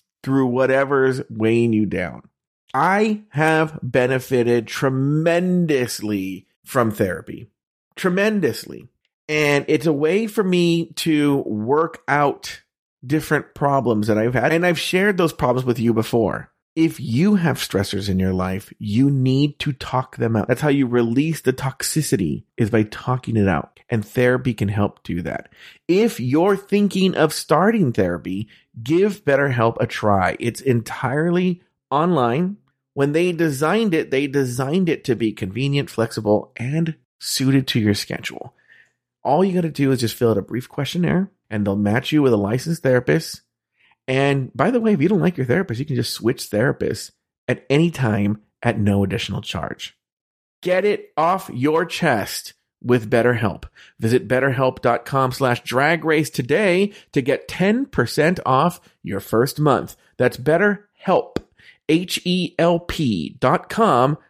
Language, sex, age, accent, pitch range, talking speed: English, male, 30-49, American, 115-165 Hz, 150 wpm